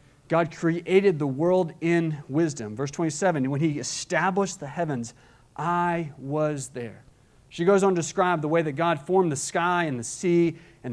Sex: male